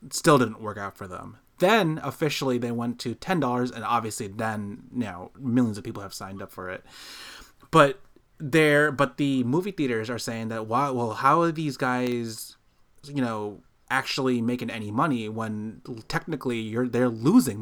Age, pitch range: 20-39, 110-145 Hz